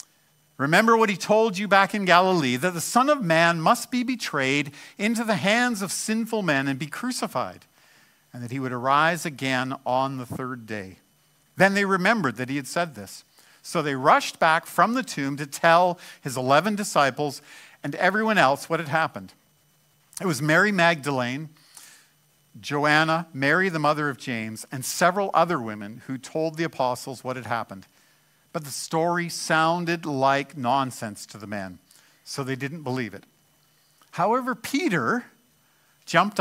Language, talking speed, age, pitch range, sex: English, 165 wpm, 50-69, 130-180 Hz, male